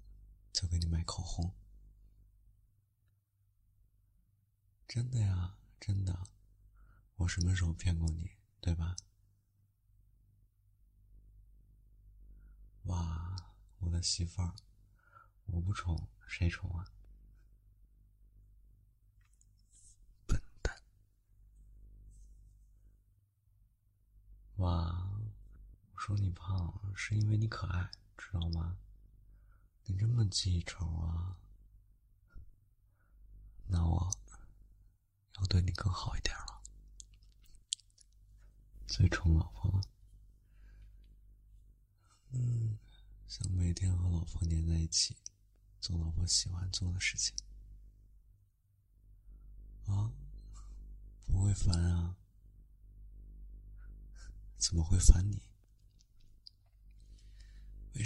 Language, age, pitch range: Chinese, 30-49, 95-105 Hz